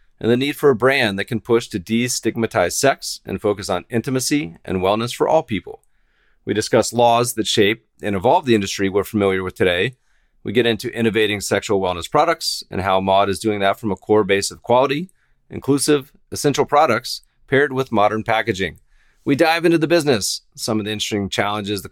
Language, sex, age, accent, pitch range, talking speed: English, male, 40-59, American, 105-135 Hz, 195 wpm